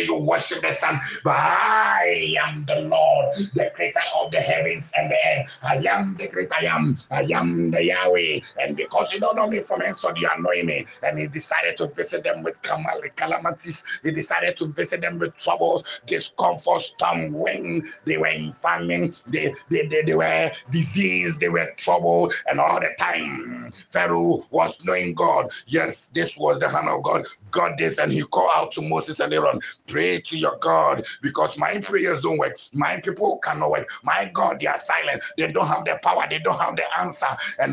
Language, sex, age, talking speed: English, male, 60-79, 200 wpm